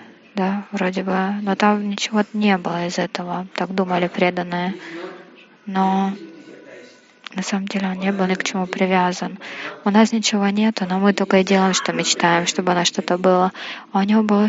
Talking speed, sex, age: 175 wpm, female, 20-39